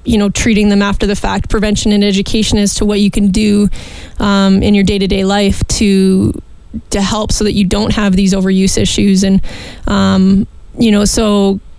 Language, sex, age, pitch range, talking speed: English, female, 20-39, 200-210 Hz, 190 wpm